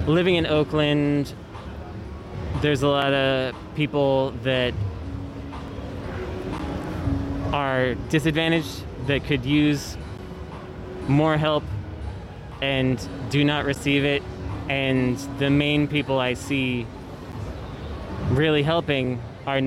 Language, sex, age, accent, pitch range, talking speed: English, male, 20-39, American, 95-140 Hz, 90 wpm